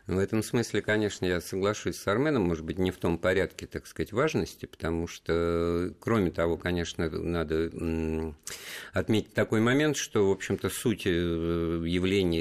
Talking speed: 150 wpm